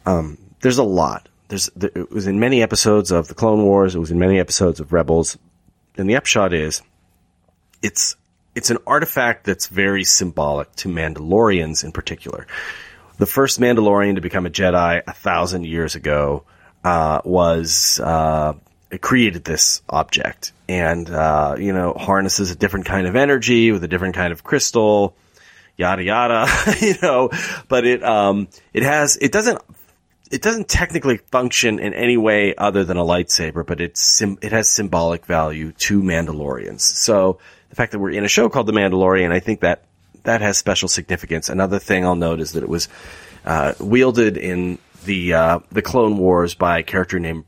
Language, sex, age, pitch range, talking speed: English, male, 30-49, 85-105 Hz, 175 wpm